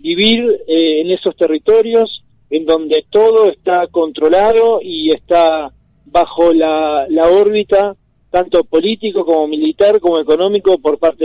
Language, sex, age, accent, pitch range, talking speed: Spanish, male, 40-59, Argentinian, 150-195 Hz, 130 wpm